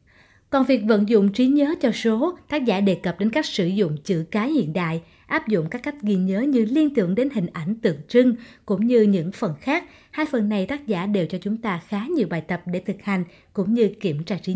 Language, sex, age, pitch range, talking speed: Vietnamese, female, 20-39, 180-255 Hz, 245 wpm